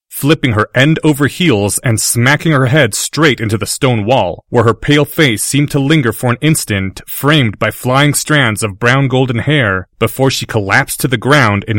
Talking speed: 200 wpm